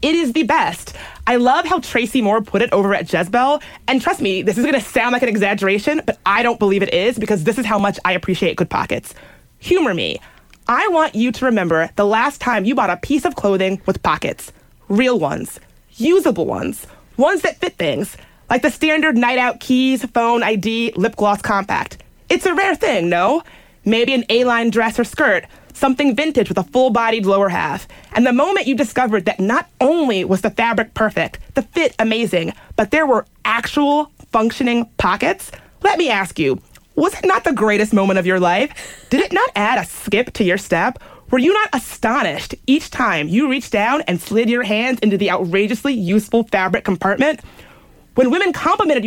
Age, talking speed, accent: 30-49, 195 wpm, American